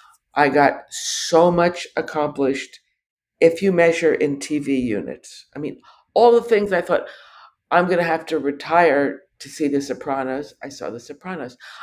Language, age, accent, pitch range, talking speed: English, 60-79, American, 140-215 Hz, 160 wpm